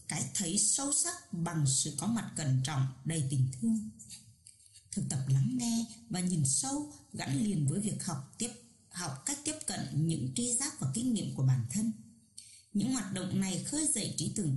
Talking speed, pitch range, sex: 195 wpm, 135-220 Hz, female